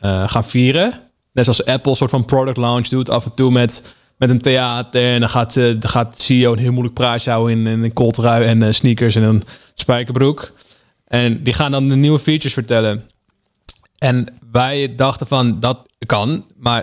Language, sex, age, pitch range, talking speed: Dutch, male, 20-39, 120-135 Hz, 205 wpm